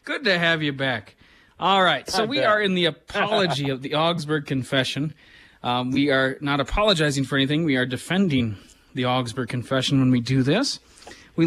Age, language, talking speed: 30-49, English, 185 wpm